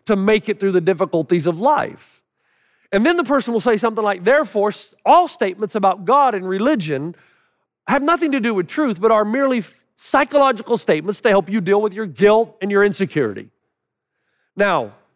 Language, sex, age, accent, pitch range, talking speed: English, male, 50-69, American, 205-285 Hz, 180 wpm